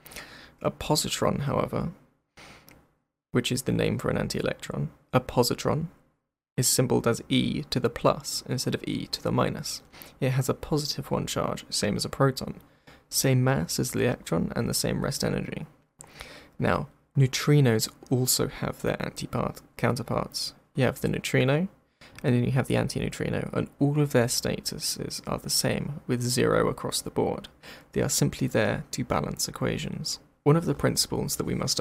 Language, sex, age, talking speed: English, male, 20-39, 170 wpm